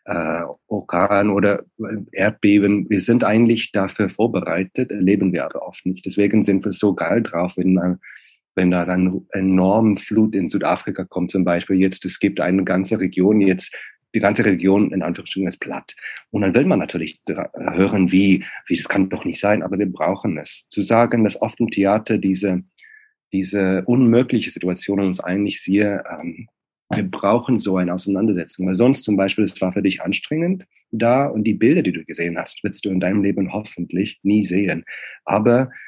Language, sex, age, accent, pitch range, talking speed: German, male, 40-59, German, 95-105 Hz, 180 wpm